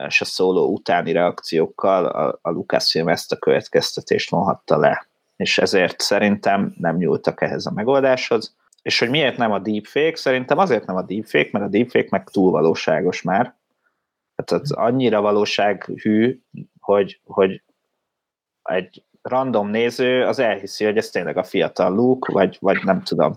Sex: male